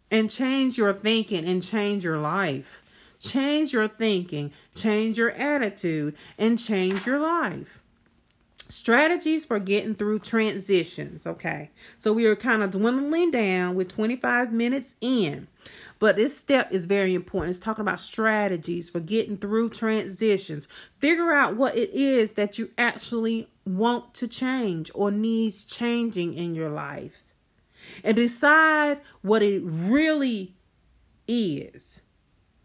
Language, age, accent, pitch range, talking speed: English, 40-59, American, 180-235 Hz, 130 wpm